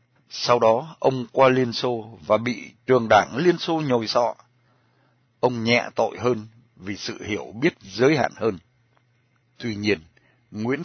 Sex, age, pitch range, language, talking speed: male, 60-79, 115-130 Hz, Vietnamese, 155 wpm